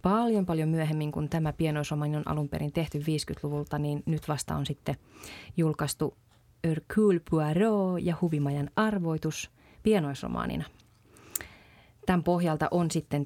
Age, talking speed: 30-49, 120 wpm